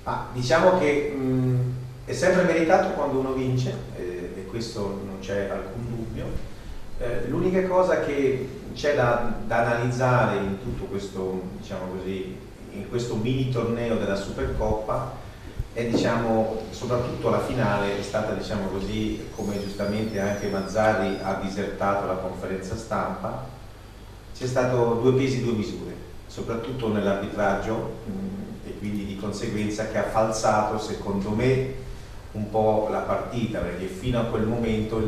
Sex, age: male, 30-49